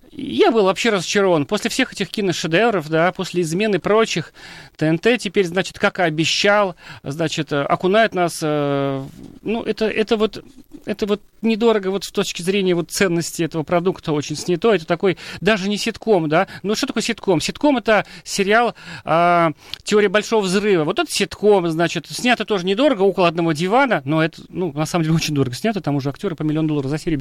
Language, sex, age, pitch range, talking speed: Russian, male, 40-59, 170-220 Hz, 185 wpm